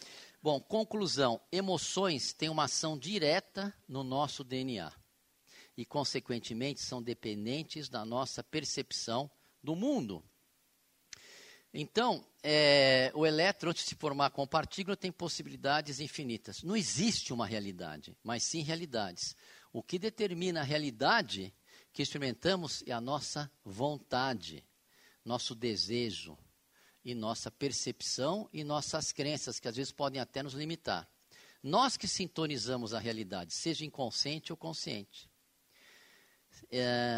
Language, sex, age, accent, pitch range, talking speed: Portuguese, male, 50-69, Brazilian, 120-160 Hz, 120 wpm